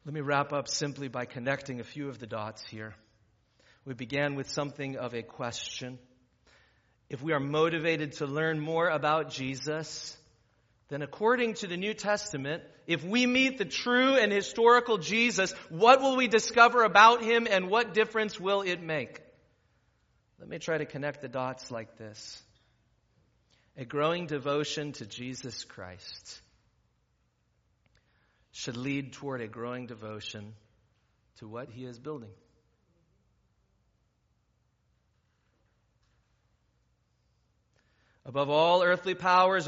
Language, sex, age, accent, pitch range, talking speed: English, male, 40-59, American, 125-190 Hz, 130 wpm